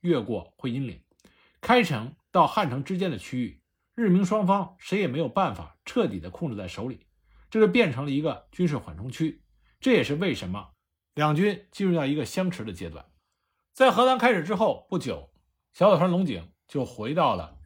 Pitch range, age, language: 115-190 Hz, 50-69, Chinese